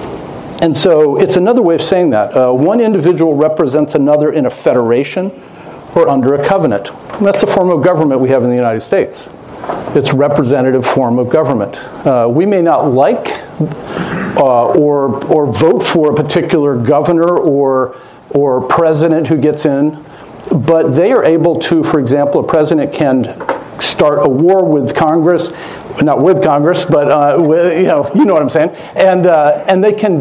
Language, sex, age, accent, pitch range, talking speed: English, male, 50-69, American, 140-170 Hz, 175 wpm